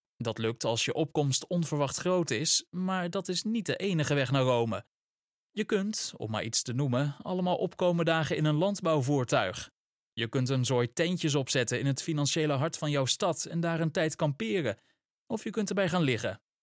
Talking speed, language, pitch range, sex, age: 195 wpm, Dutch, 130-175 Hz, male, 20-39